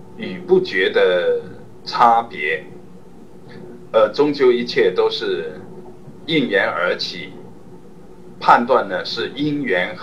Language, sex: Chinese, male